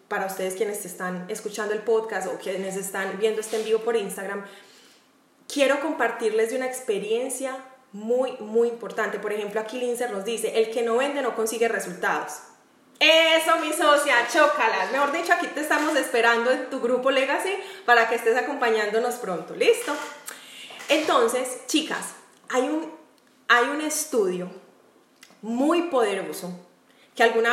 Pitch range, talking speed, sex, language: 225-310 Hz, 150 wpm, female, Spanish